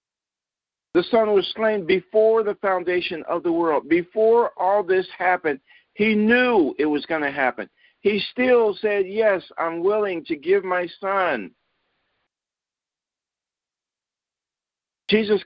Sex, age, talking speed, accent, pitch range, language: male, 50-69, 125 wpm, American, 175-230 Hz, English